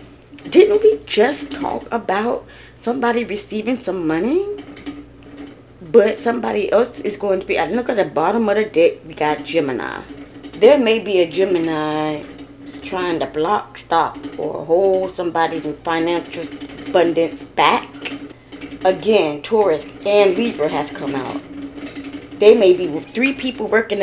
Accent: American